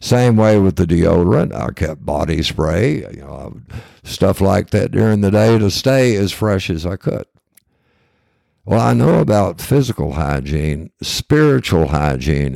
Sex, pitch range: male, 75-100 Hz